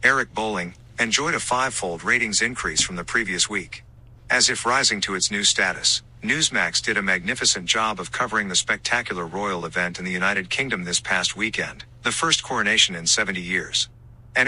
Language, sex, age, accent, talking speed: English, male, 50-69, American, 180 wpm